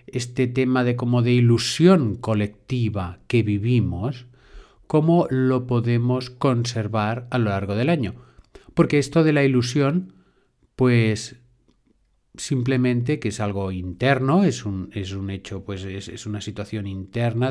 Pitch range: 105-130 Hz